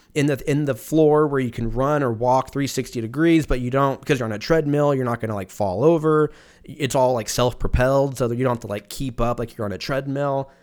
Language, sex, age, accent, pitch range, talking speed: English, male, 20-39, American, 100-135 Hz, 255 wpm